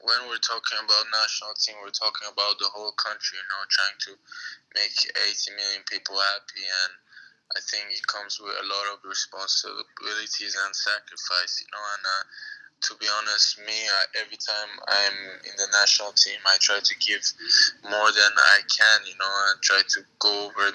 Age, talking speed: 10-29, 185 wpm